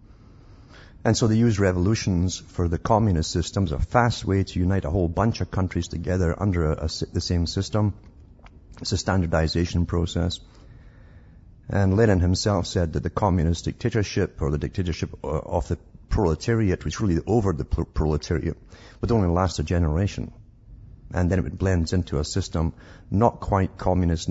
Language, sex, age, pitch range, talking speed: English, male, 50-69, 85-105 Hz, 165 wpm